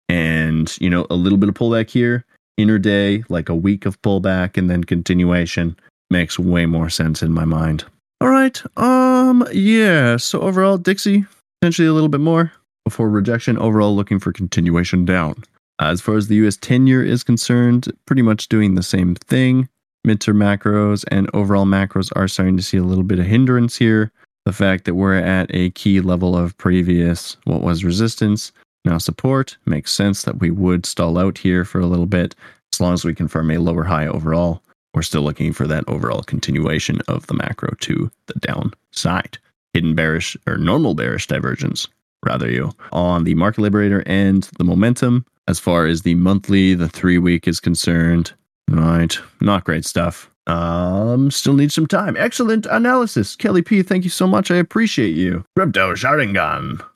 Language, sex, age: English, male, 20-39